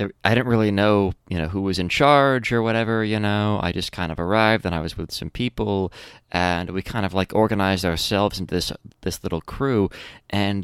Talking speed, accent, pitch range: 215 wpm, American, 95-115 Hz